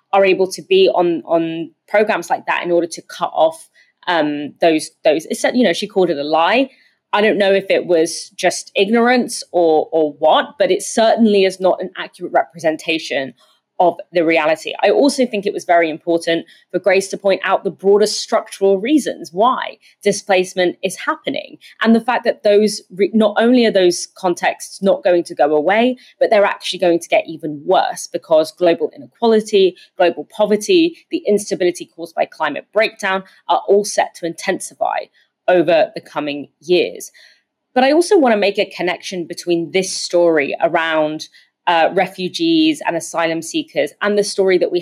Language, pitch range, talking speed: English, 170-225 Hz, 175 wpm